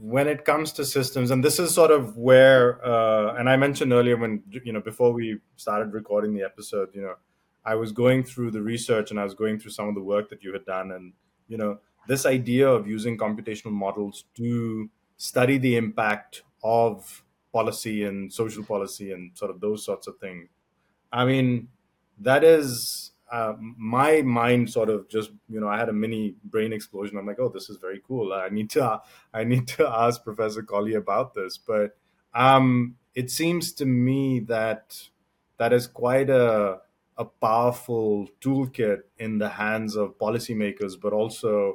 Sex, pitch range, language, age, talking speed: male, 105-125 Hz, English, 30-49, 185 wpm